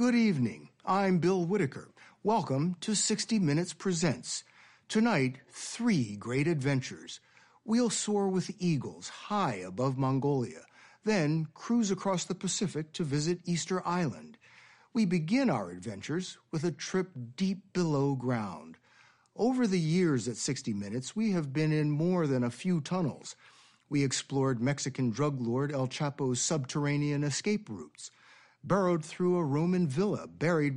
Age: 60-79